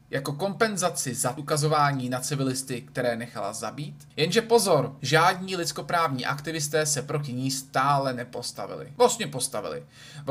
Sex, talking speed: male, 130 wpm